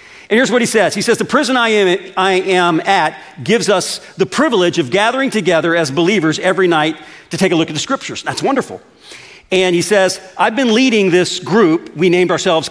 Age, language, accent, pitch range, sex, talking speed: 50-69, English, American, 145-205 Hz, male, 205 wpm